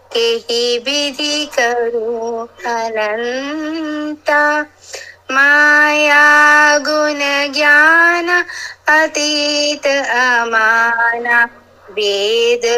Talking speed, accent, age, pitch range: 45 wpm, native, 20-39, 245-310 Hz